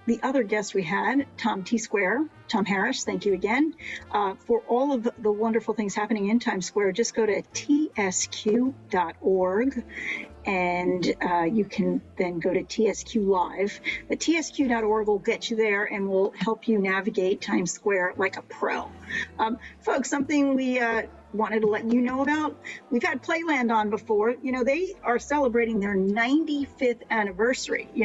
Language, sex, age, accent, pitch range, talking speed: English, female, 50-69, American, 205-255 Hz, 165 wpm